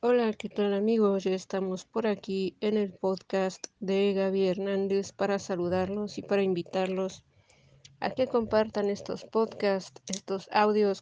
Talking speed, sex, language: 140 wpm, female, Spanish